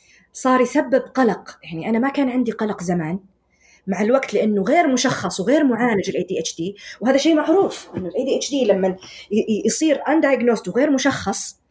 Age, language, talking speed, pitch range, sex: 20-39, Arabic, 170 wpm, 195-300 Hz, female